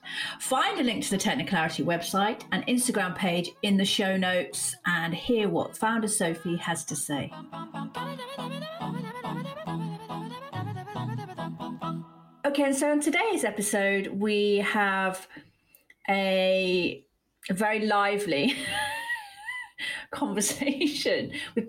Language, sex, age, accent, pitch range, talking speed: English, female, 40-59, British, 175-225 Hz, 95 wpm